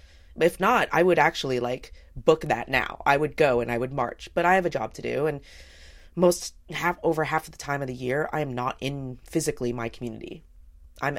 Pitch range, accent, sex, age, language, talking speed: 120-155 Hz, American, female, 20-39, English, 225 wpm